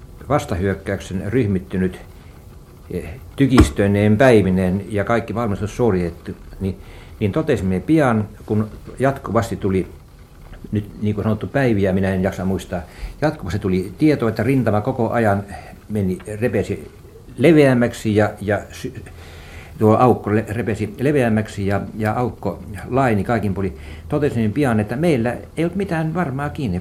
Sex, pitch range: male, 95-125 Hz